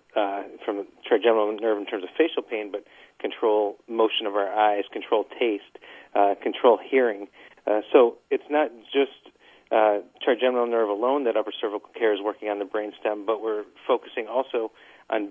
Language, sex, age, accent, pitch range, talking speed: English, male, 40-59, American, 105-125 Hz, 175 wpm